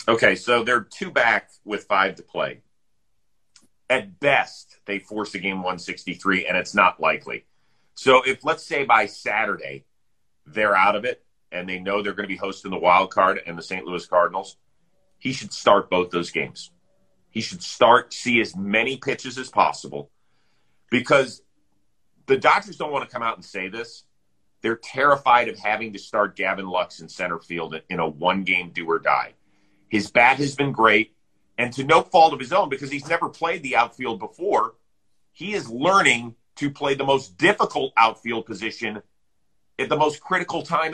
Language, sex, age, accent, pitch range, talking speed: English, male, 40-59, American, 95-145 Hz, 175 wpm